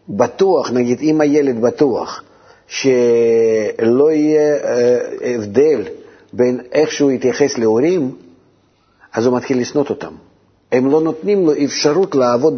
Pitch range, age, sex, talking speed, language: 120-150 Hz, 50-69, male, 115 wpm, Hebrew